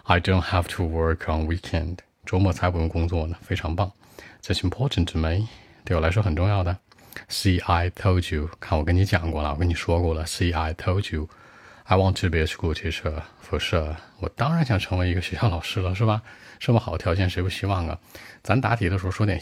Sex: male